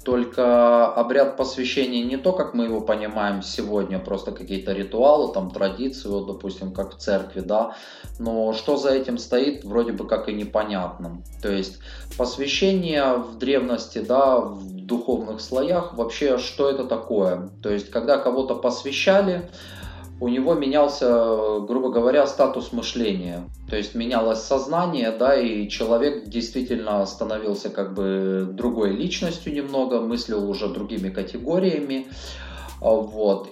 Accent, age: native, 20-39